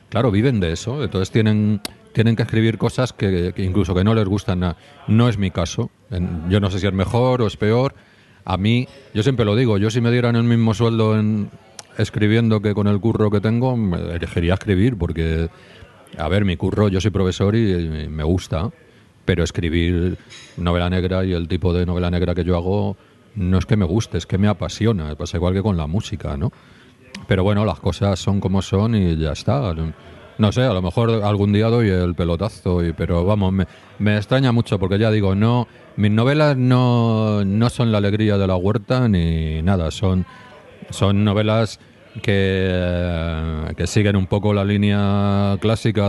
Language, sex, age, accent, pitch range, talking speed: Spanish, male, 40-59, Spanish, 95-115 Hz, 195 wpm